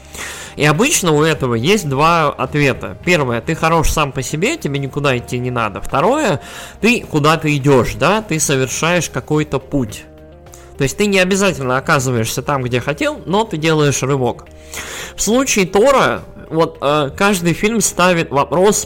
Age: 20-39